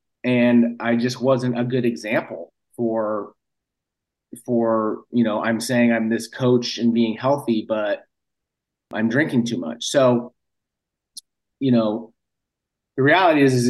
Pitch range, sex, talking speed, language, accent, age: 120-135 Hz, male, 135 wpm, English, American, 30-49